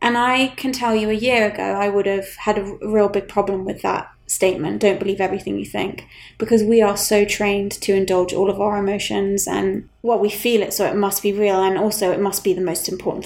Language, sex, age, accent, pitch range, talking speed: English, female, 20-39, British, 190-225 Hz, 240 wpm